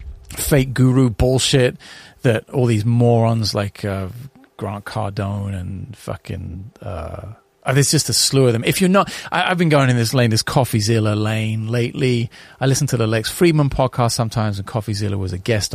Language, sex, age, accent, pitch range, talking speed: English, male, 30-49, British, 105-135 Hz, 175 wpm